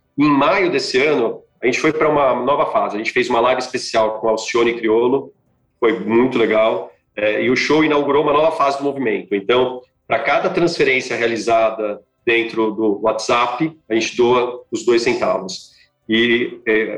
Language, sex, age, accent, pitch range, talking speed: Portuguese, male, 40-59, Brazilian, 110-150 Hz, 175 wpm